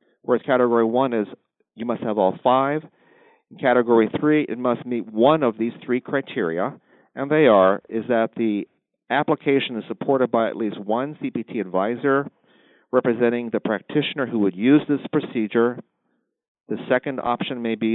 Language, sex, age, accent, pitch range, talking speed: English, male, 50-69, American, 110-135 Hz, 160 wpm